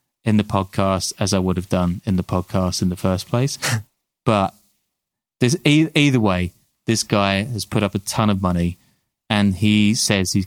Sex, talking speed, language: male, 180 wpm, English